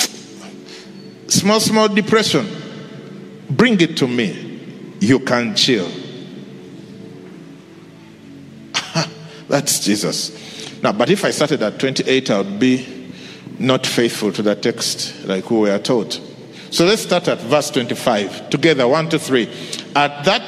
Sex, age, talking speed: male, 50-69, 130 wpm